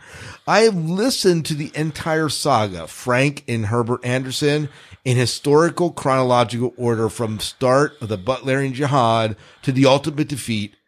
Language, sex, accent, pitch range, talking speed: English, male, American, 120-165 Hz, 140 wpm